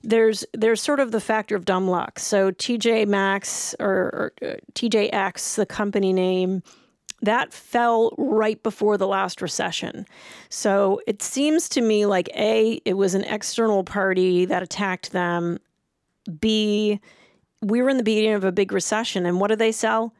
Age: 30-49